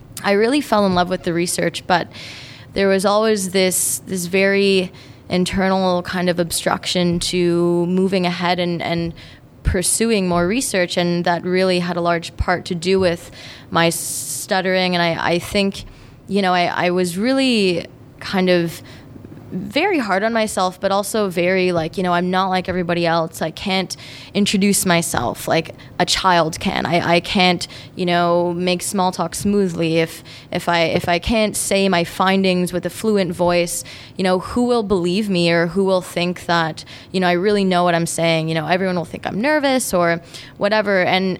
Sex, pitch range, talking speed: female, 170-190 Hz, 180 wpm